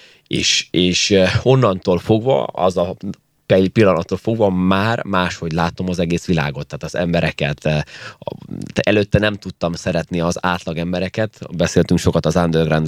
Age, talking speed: 20-39, 130 wpm